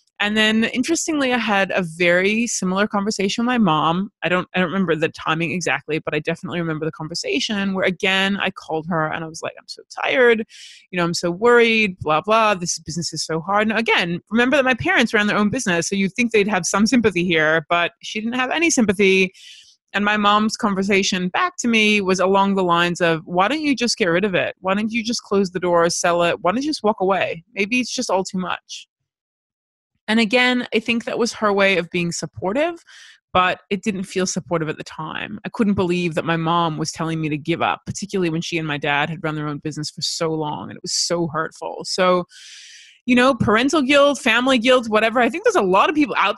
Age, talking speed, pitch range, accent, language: 20-39, 235 wpm, 170-220 Hz, American, English